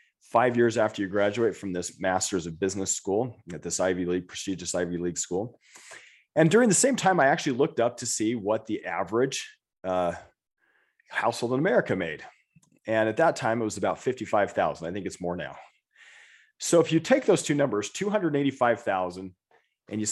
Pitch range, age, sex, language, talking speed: 95-150 Hz, 30-49, male, English, 195 wpm